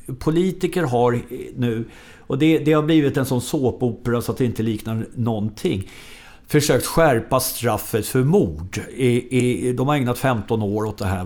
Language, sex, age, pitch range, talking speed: Swedish, male, 60-79, 105-135 Hz, 160 wpm